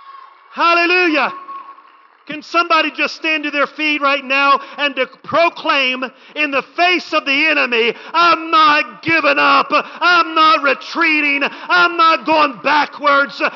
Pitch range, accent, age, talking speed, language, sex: 230-320 Hz, American, 40-59, 130 wpm, English, male